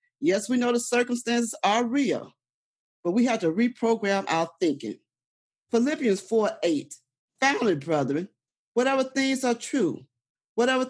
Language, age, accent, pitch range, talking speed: English, 40-59, American, 175-255 Hz, 130 wpm